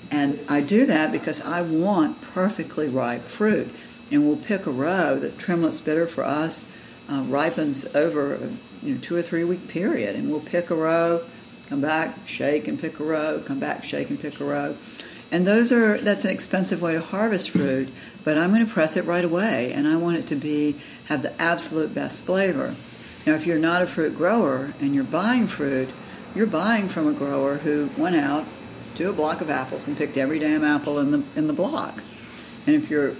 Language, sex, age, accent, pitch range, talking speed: English, female, 60-79, American, 145-205 Hz, 210 wpm